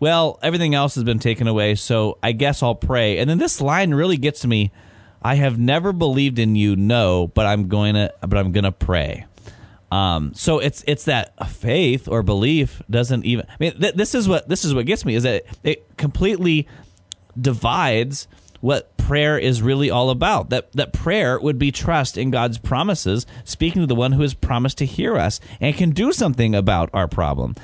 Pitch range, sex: 100-130 Hz, male